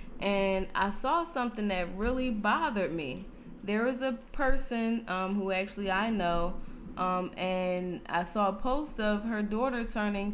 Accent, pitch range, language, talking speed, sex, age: American, 195-240 Hz, English, 155 wpm, female, 20-39